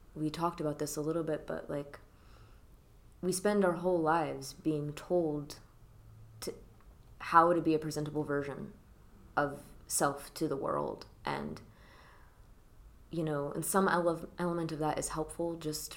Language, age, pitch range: English, 20-39, 120-165 Hz